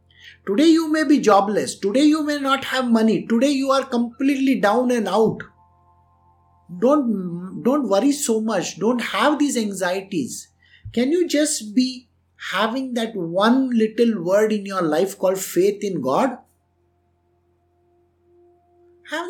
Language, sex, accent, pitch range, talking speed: English, male, Indian, 175-255 Hz, 135 wpm